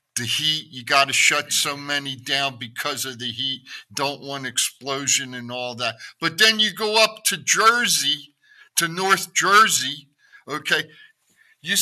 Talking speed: 150 wpm